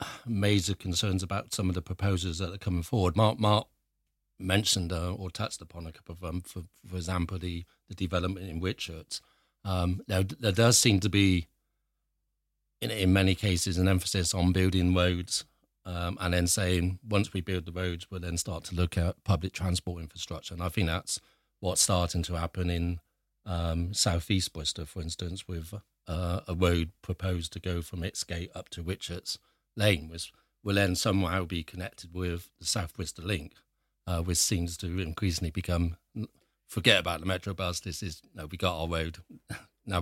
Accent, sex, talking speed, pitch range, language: British, male, 185 wpm, 85-100 Hz, English